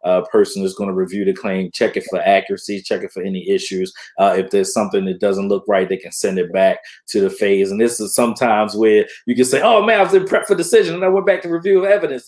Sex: male